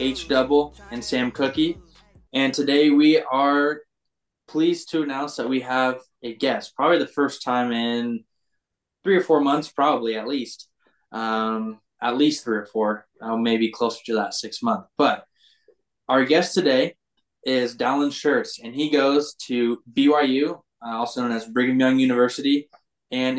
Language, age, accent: English, 10-29, American